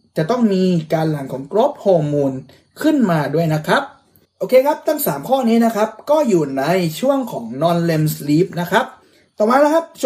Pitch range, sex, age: 165-240 Hz, male, 30-49